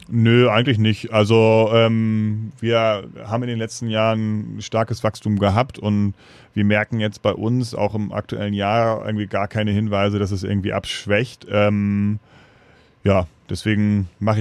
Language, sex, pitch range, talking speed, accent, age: German, male, 105-120 Hz, 150 wpm, German, 30-49